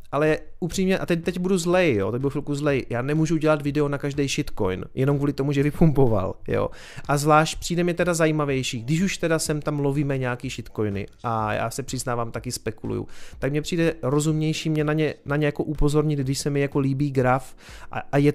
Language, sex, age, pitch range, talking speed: Czech, male, 30-49, 130-155 Hz, 215 wpm